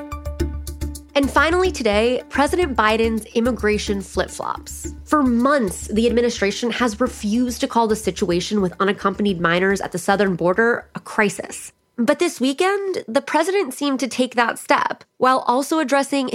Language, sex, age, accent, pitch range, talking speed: English, female, 20-39, American, 200-255 Hz, 145 wpm